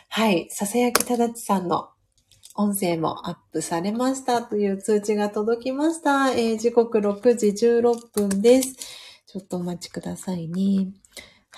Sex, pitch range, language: female, 185-240 Hz, Japanese